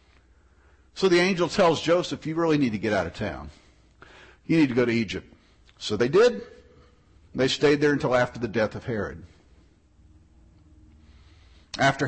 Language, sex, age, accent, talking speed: English, male, 50-69, American, 160 wpm